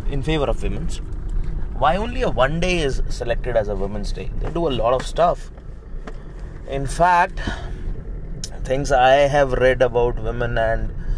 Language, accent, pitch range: Hindi, native, 115-145 Hz